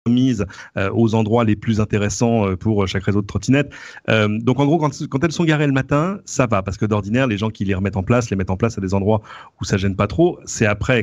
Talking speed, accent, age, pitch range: 255 wpm, French, 40-59, 100-120 Hz